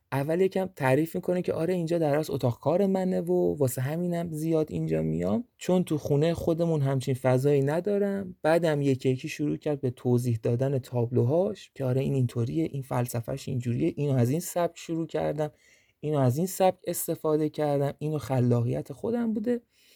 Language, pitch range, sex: Persian, 115-155 Hz, male